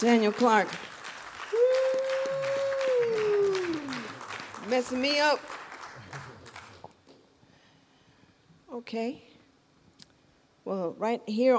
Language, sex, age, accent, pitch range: English, female, 50-69, American, 155-195 Hz